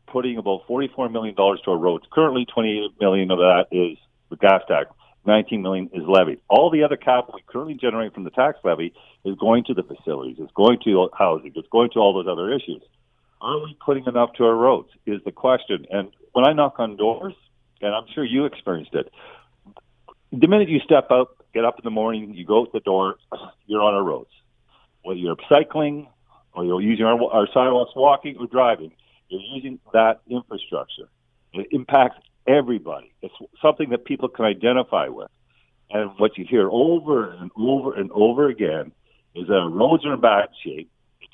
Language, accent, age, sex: English, American, 50-69, male